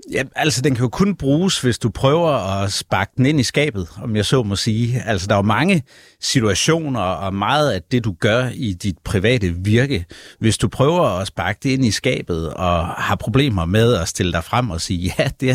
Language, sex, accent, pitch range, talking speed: Danish, male, native, 90-130 Hz, 225 wpm